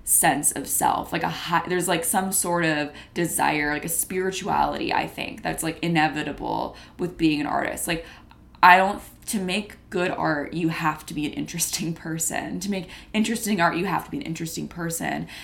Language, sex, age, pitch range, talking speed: English, female, 20-39, 160-190 Hz, 190 wpm